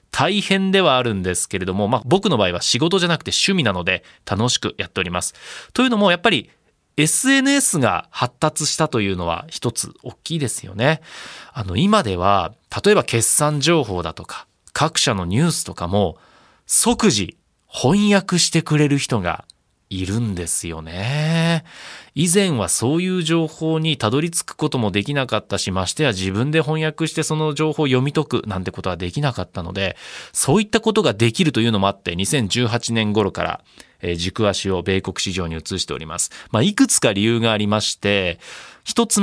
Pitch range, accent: 100-165 Hz, native